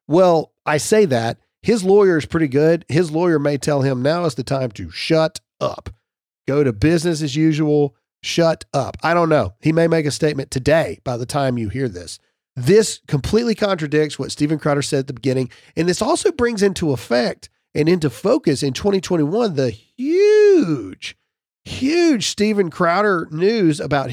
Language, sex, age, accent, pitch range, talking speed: English, male, 40-59, American, 130-180 Hz, 175 wpm